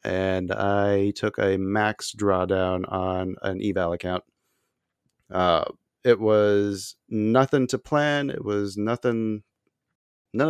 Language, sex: English, male